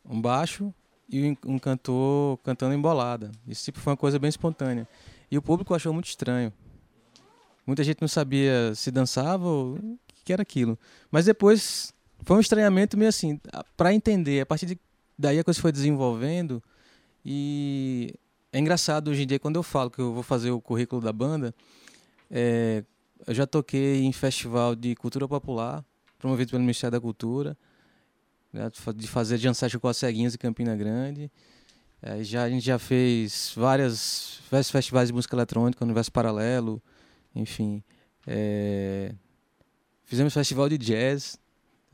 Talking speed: 155 wpm